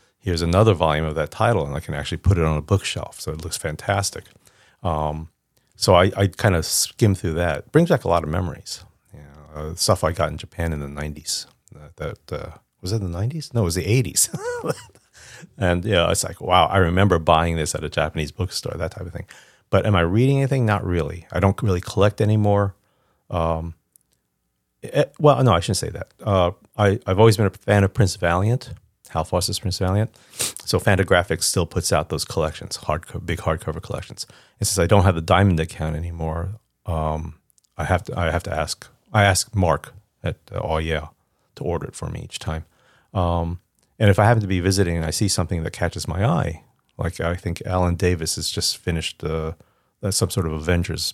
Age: 40-59